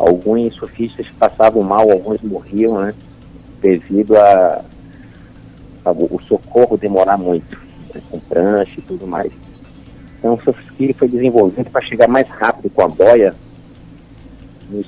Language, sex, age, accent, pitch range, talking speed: Portuguese, male, 50-69, Brazilian, 95-120 Hz, 135 wpm